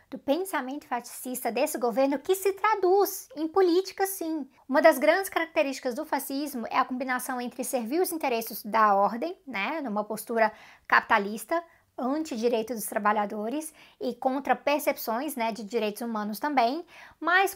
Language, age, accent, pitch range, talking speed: Portuguese, 20-39, Brazilian, 245-315 Hz, 135 wpm